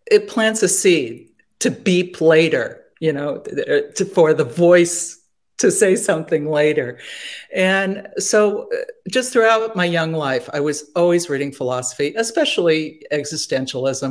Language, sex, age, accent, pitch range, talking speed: English, female, 60-79, American, 150-200 Hz, 130 wpm